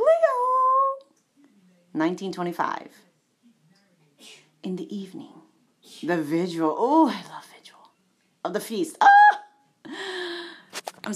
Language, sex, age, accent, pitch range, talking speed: English, female, 30-49, American, 180-255 Hz, 85 wpm